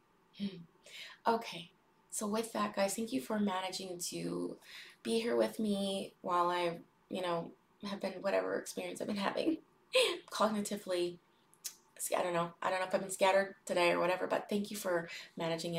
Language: English